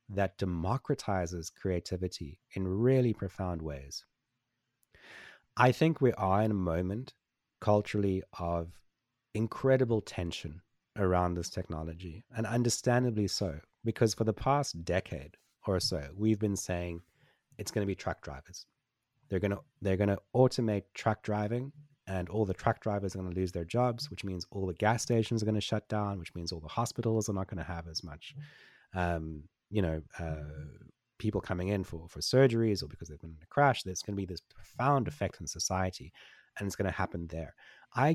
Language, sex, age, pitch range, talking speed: English, male, 30-49, 90-115 Hz, 180 wpm